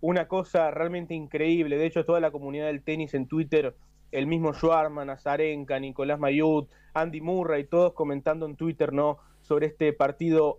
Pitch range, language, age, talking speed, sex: 155-195 Hz, Spanish, 20-39, 170 wpm, male